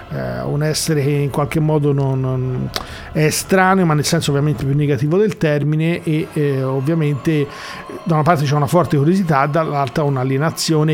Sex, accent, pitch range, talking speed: male, native, 140-165 Hz, 170 wpm